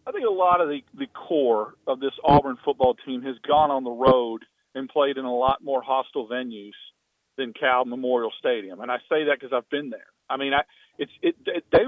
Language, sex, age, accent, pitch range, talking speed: English, male, 40-59, American, 135-170 Hz, 225 wpm